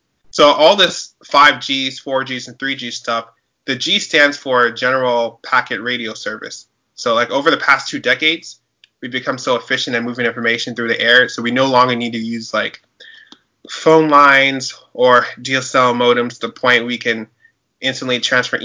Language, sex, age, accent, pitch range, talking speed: English, male, 20-39, American, 115-130 Hz, 170 wpm